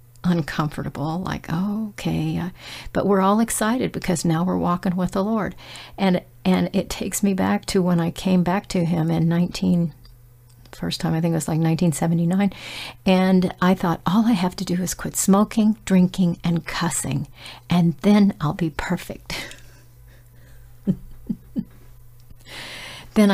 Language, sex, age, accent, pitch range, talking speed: English, female, 50-69, American, 155-195 Hz, 150 wpm